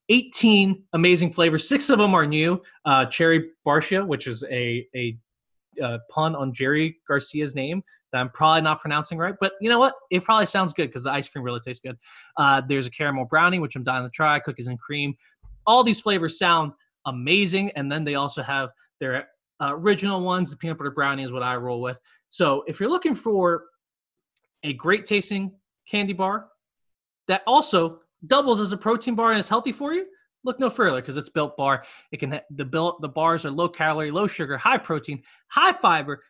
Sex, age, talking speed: male, 20-39, 200 wpm